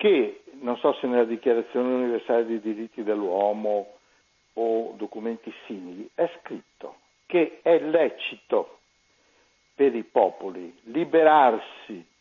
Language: Italian